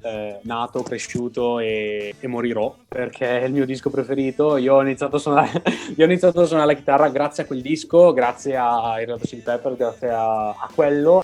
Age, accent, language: 20-39, native, Italian